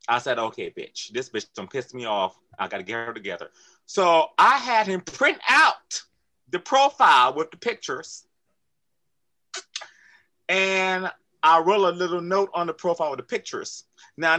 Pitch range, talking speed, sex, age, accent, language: 150-235 Hz, 165 wpm, male, 30-49, American, English